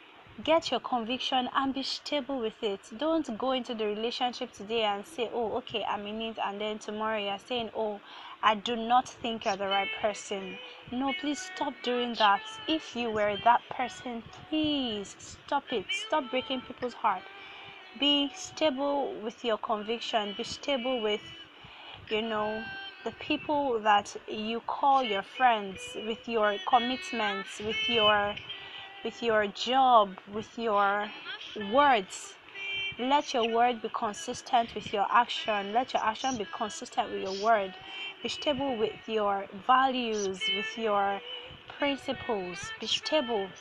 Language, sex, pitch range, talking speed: English, female, 210-265 Hz, 145 wpm